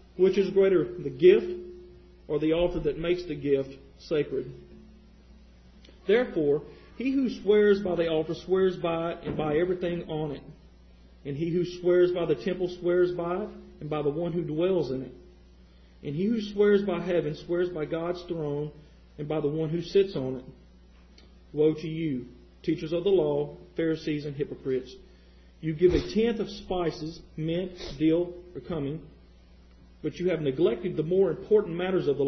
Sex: male